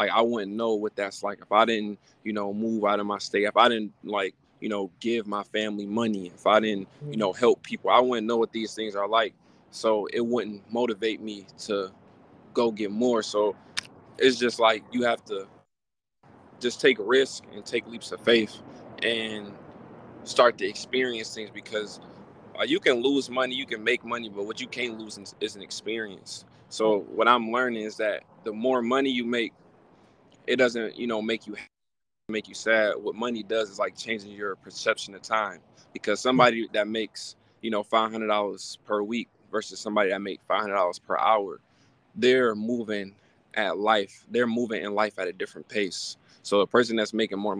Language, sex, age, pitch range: English, male, 20-39, 105-115 Hz